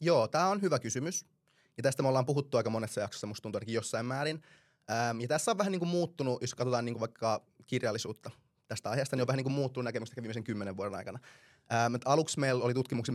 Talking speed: 210 wpm